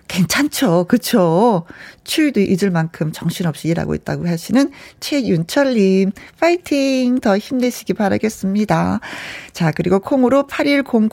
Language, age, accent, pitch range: Korean, 40-59, native, 175-260 Hz